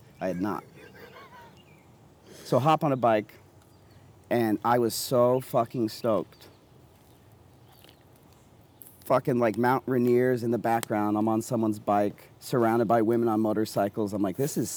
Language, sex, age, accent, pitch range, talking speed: English, male, 40-59, American, 105-125 Hz, 140 wpm